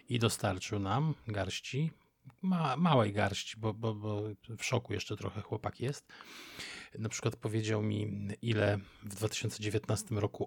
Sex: male